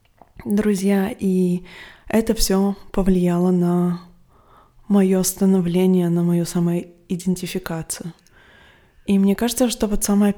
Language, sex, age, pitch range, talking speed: Russian, female, 20-39, 175-195 Hz, 105 wpm